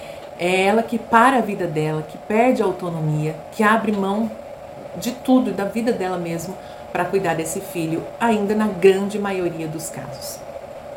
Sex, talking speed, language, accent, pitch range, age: female, 170 wpm, Portuguese, Brazilian, 165-215 Hz, 40-59